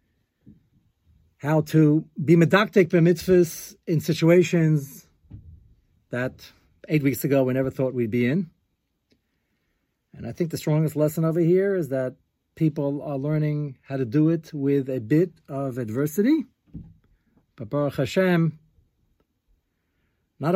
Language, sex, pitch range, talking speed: English, male, 130-160 Hz, 130 wpm